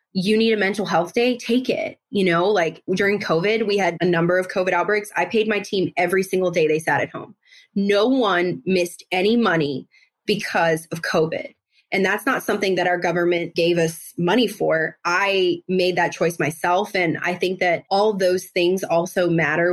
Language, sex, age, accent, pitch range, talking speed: English, female, 20-39, American, 170-210 Hz, 195 wpm